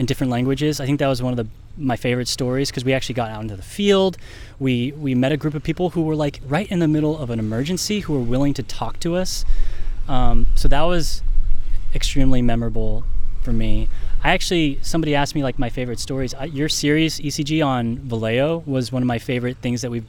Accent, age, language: American, 10-29, English